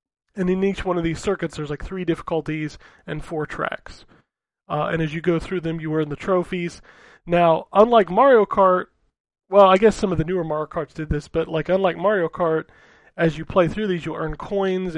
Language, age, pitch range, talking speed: English, 30-49, 155-185 Hz, 210 wpm